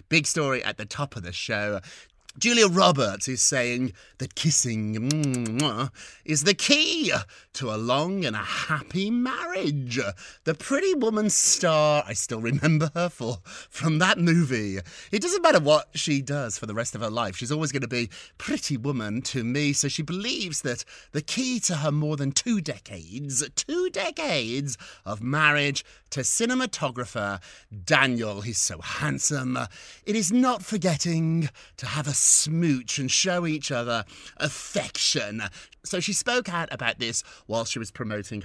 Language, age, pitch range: English, 30-49, 115-165 Hz